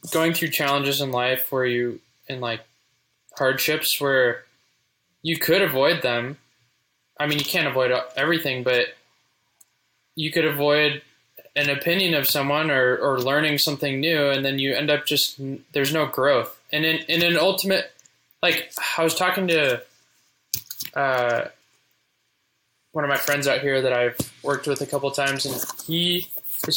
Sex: male